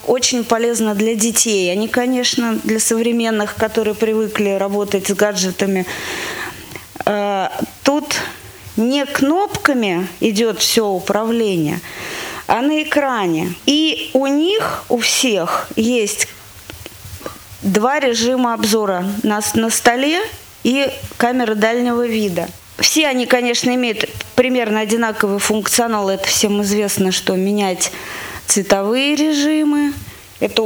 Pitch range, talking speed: 205-255 Hz, 105 wpm